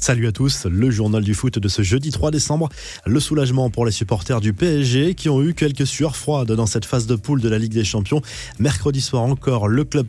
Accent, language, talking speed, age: French, French, 240 wpm, 20-39